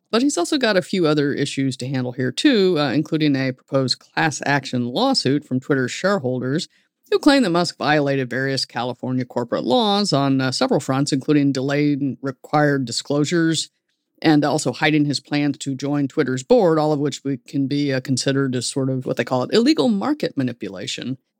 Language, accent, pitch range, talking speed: English, American, 130-155 Hz, 180 wpm